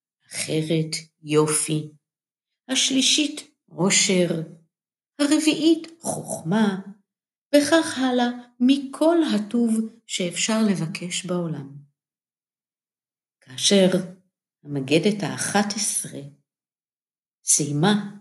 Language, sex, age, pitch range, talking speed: Hebrew, female, 50-69, 155-205 Hz, 60 wpm